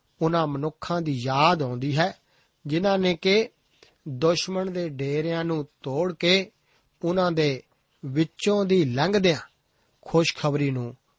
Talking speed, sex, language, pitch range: 120 wpm, male, Punjabi, 140-170 Hz